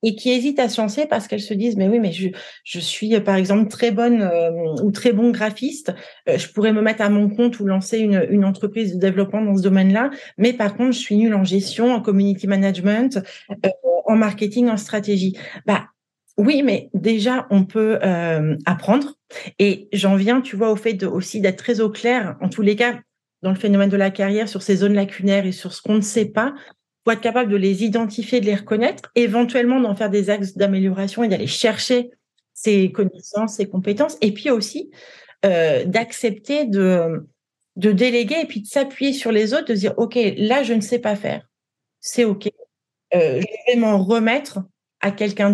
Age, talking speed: 40-59, 205 wpm